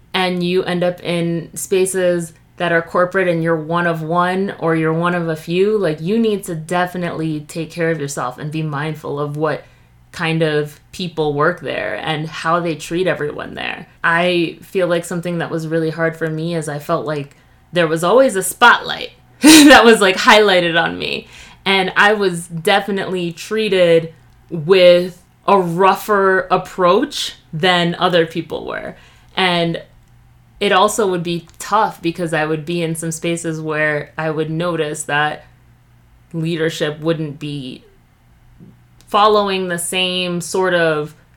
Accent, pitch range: American, 160-185 Hz